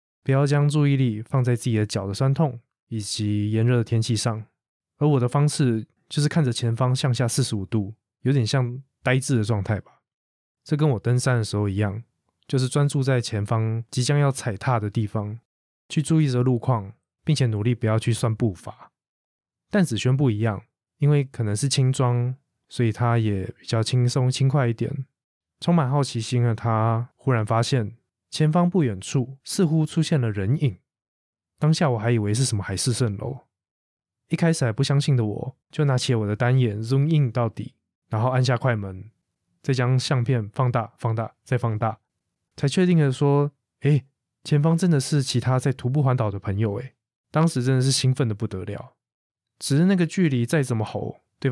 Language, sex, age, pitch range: Chinese, male, 20-39, 110-140 Hz